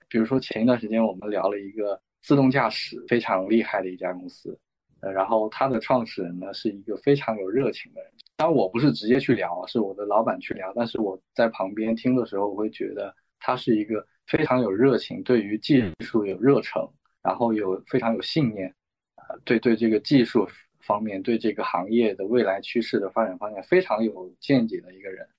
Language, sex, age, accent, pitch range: Chinese, male, 20-39, native, 105-125 Hz